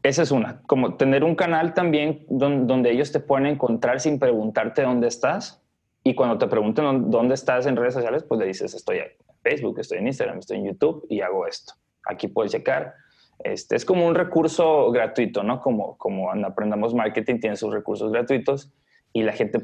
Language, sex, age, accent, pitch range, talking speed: Spanish, male, 20-39, Mexican, 115-165 Hz, 190 wpm